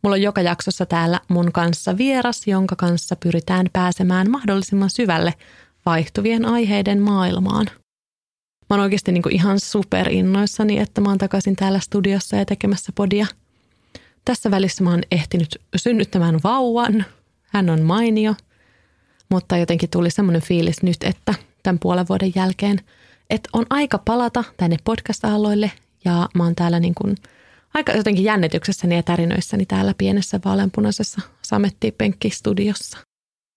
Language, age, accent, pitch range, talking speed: Finnish, 30-49, native, 175-205 Hz, 135 wpm